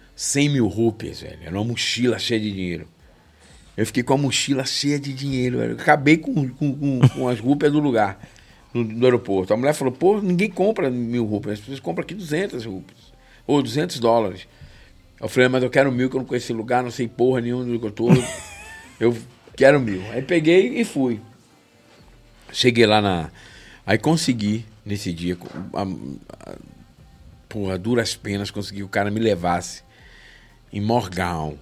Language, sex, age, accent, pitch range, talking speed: Portuguese, male, 50-69, Brazilian, 95-125 Hz, 175 wpm